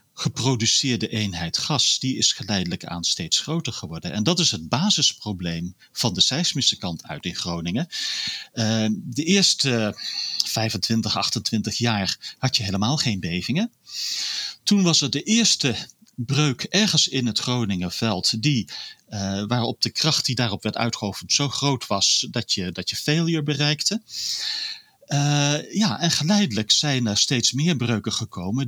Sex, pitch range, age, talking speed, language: male, 110-155 Hz, 40-59, 150 wpm, Dutch